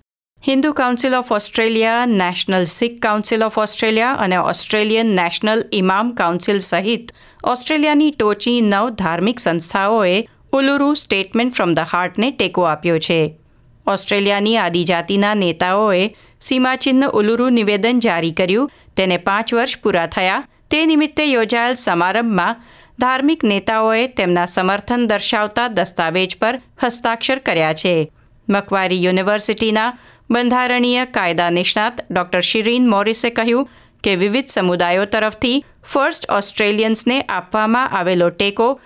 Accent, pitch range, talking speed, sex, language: native, 185-245 Hz, 100 wpm, female, Gujarati